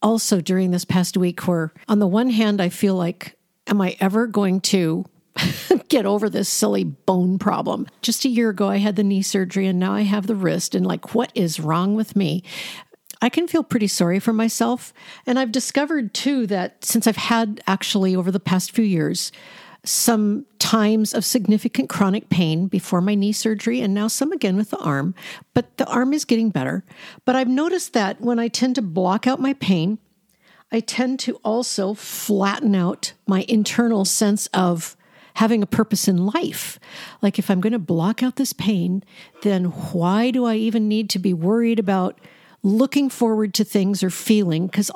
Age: 50-69